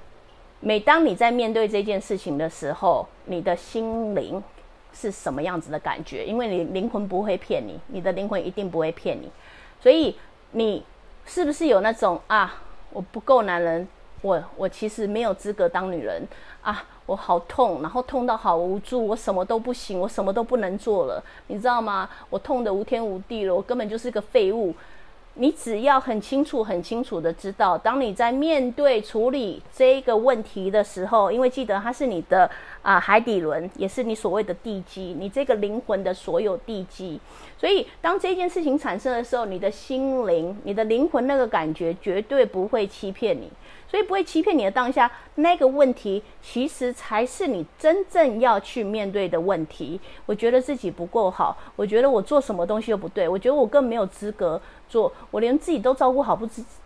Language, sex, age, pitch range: English, female, 30-49, 195-265 Hz